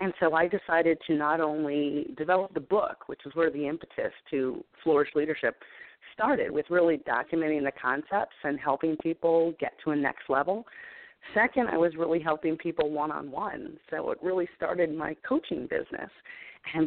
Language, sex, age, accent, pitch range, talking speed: English, female, 40-59, American, 150-185 Hz, 165 wpm